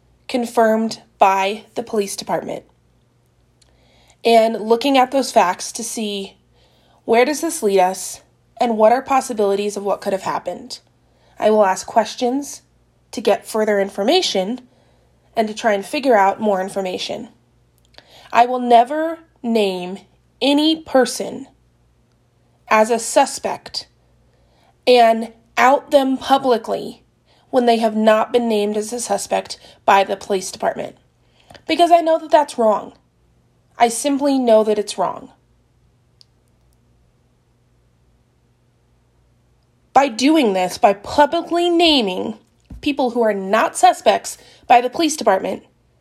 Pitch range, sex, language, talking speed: 200-260 Hz, female, English, 125 wpm